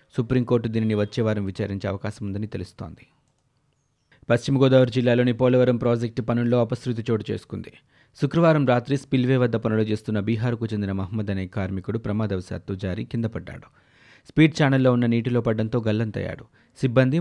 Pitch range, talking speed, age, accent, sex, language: 110-130 Hz, 125 wpm, 30-49, native, male, Telugu